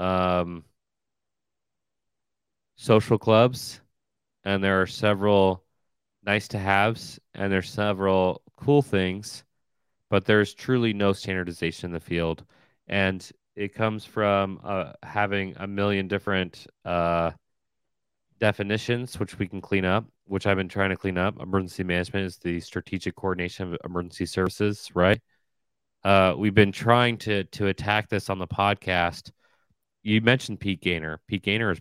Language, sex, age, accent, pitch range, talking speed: English, male, 30-49, American, 90-105 Hz, 140 wpm